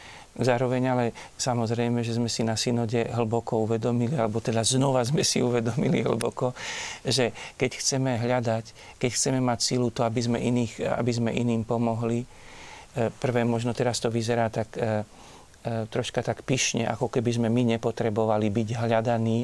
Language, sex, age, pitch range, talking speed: Slovak, male, 40-59, 115-125 Hz, 150 wpm